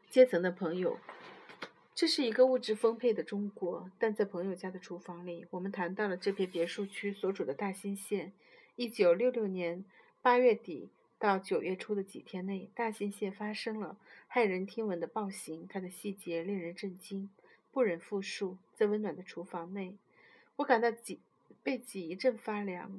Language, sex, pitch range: Chinese, female, 190-230 Hz